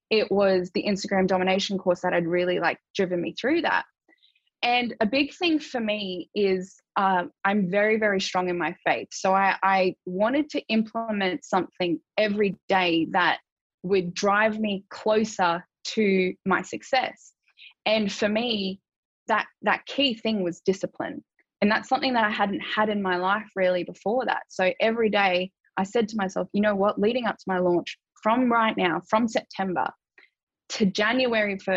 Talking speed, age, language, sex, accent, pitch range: 170 wpm, 10-29, English, female, Australian, 190-225 Hz